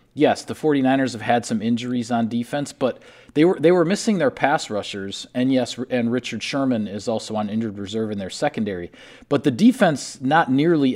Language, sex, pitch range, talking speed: English, male, 110-135 Hz, 195 wpm